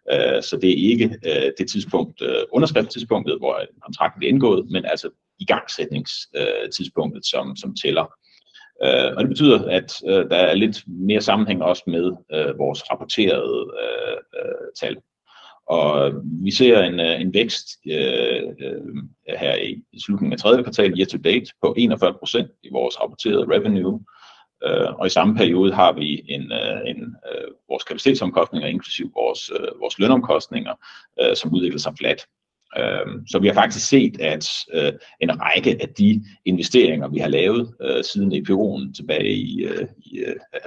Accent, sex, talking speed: native, male, 145 wpm